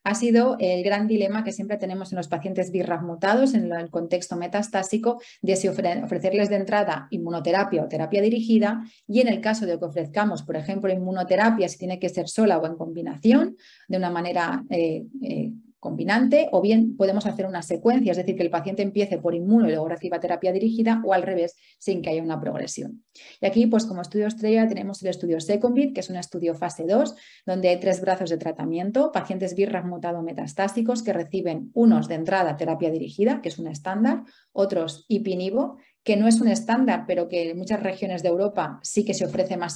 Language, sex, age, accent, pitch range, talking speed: Spanish, female, 30-49, Spanish, 175-225 Hz, 200 wpm